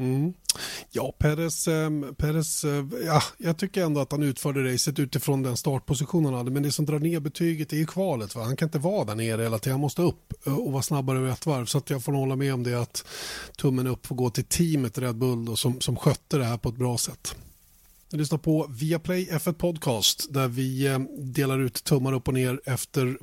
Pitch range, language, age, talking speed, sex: 130-150 Hz, Swedish, 30-49, 220 wpm, male